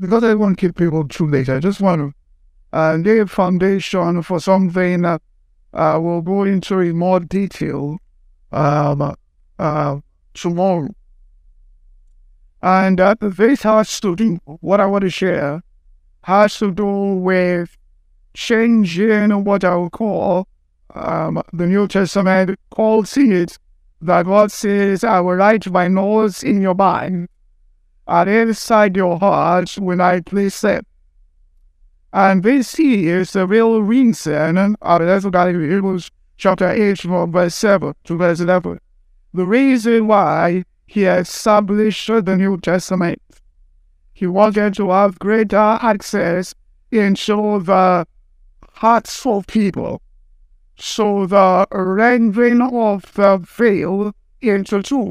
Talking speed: 135 wpm